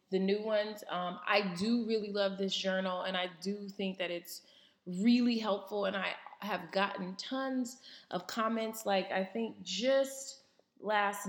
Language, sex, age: English, female, 20-39